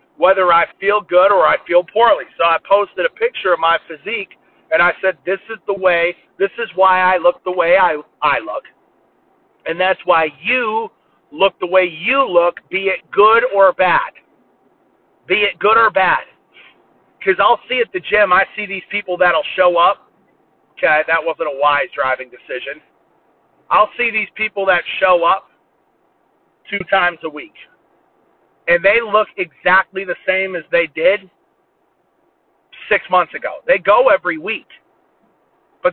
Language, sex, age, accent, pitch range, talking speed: English, male, 40-59, American, 170-225 Hz, 165 wpm